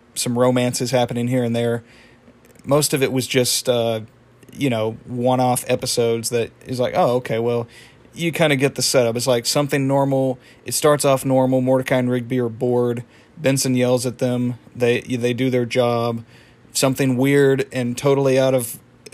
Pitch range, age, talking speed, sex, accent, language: 120-130 Hz, 40-59, 180 wpm, male, American, English